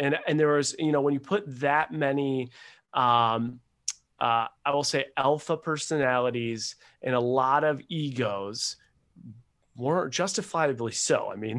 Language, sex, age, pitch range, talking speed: English, male, 30-49, 125-170 Hz, 145 wpm